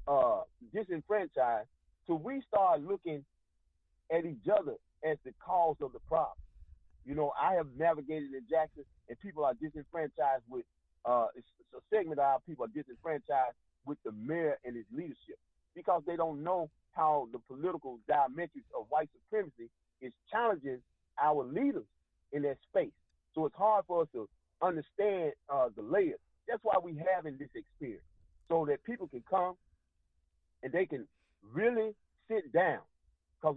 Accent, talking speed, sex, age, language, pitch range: American, 160 wpm, male, 40-59, English, 135-195 Hz